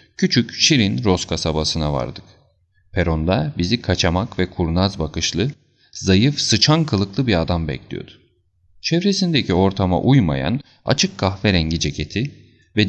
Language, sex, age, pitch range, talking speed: Turkish, male, 40-59, 85-120 Hz, 110 wpm